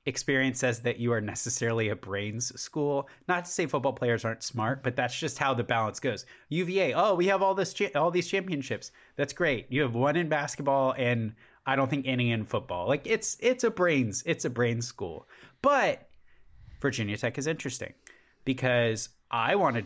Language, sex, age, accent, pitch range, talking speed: English, male, 30-49, American, 110-145 Hz, 190 wpm